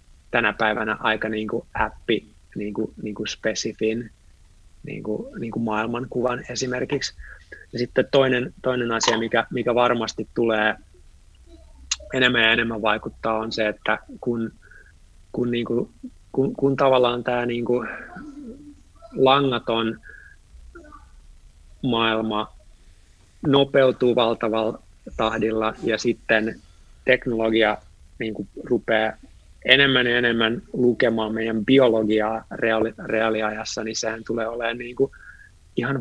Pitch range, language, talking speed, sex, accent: 105-120 Hz, Finnish, 100 wpm, male, native